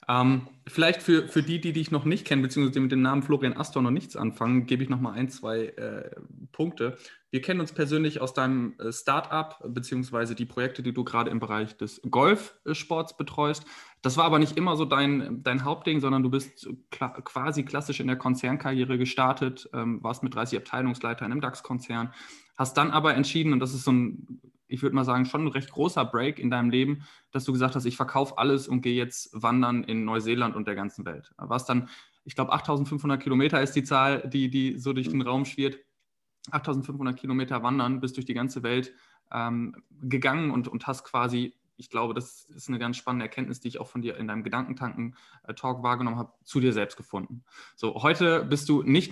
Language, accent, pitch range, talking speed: German, German, 120-140 Hz, 205 wpm